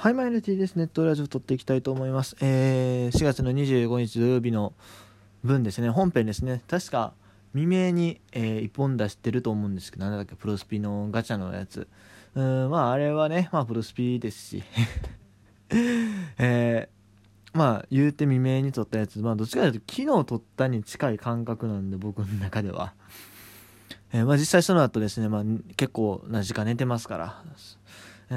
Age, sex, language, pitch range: 20-39, male, Japanese, 105-150 Hz